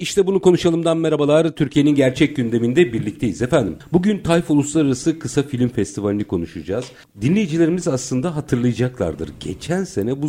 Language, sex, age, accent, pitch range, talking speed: Turkish, male, 50-69, native, 105-145 Hz, 130 wpm